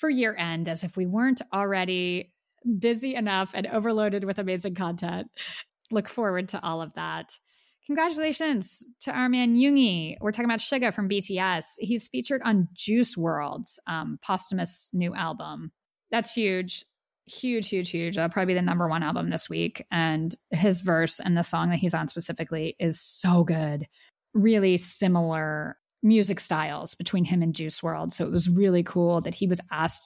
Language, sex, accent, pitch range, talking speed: English, female, American, 165-210 Hz, 170 wpm